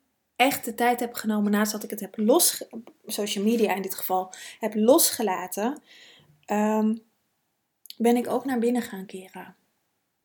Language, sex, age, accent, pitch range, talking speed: Dutch, female, 20-39, Dutch, 205-245 Hz, 160 wpm